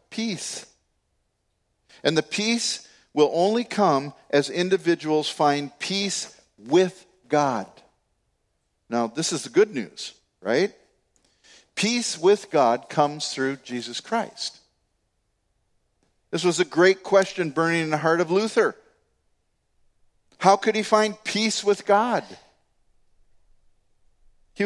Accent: American